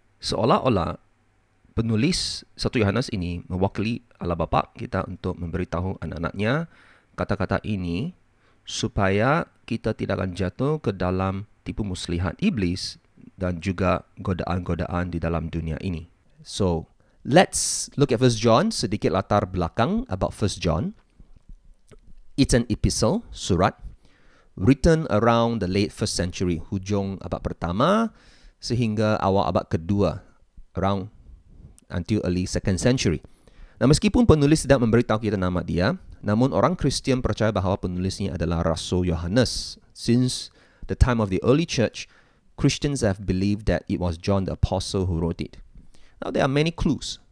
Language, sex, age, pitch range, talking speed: English, male, 30-49, 90-115 Hz, 135 wpm